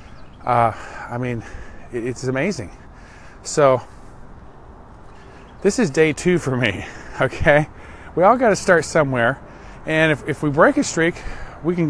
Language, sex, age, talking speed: English, male, 40-59, 140 wpm